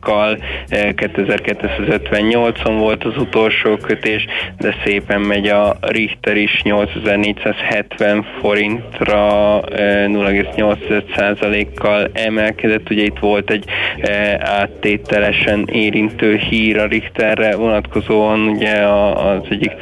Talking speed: 85 wpm